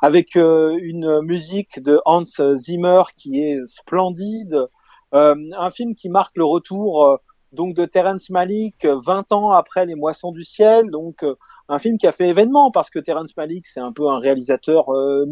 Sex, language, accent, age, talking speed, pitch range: male, French, French, 30-49, 185 wpm, 150-205 Hz